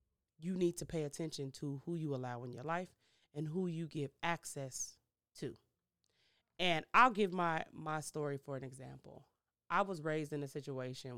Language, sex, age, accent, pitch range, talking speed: English, female, 30-49, American, 140-175 Hz, 175 wpm